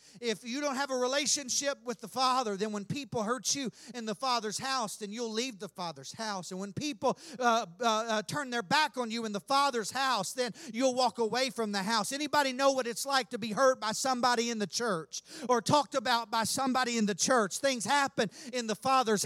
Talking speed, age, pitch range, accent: 220 wpm, 40-59, 230-285 Hz, American